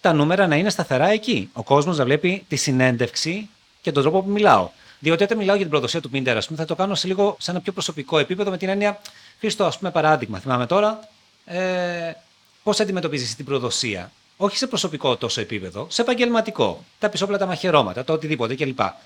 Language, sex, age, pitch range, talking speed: Greek, male, 30-49, 125-190 Hz, 200 wpm